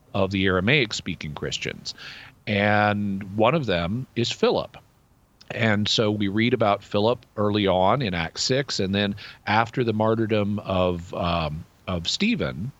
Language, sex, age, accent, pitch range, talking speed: English, male, 50-69, American, 95-115 Hz, 140 wpm